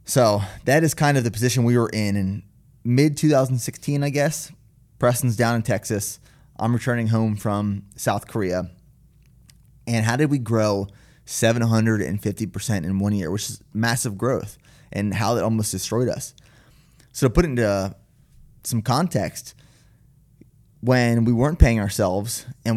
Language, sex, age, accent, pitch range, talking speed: English, male, 20-39, American, 100-130 Hz, 150 wpm